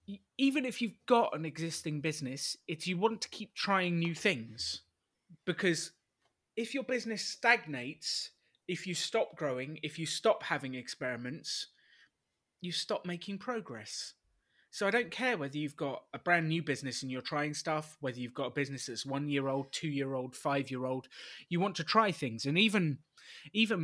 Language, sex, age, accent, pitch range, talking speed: English, male, 30-49, British, 130-175 Hz, 180 wpm